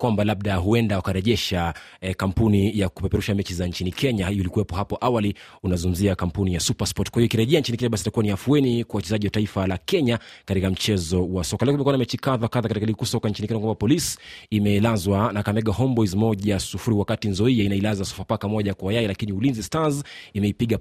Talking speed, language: 170 wpm, Swahili